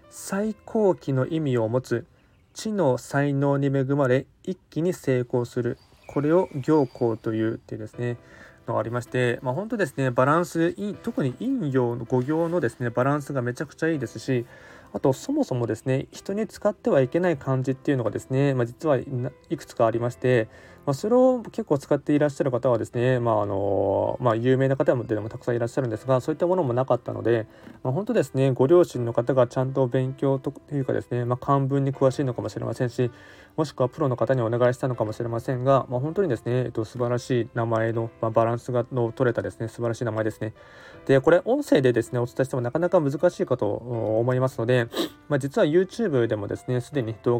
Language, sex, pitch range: Japanese, male, 120-145 Hz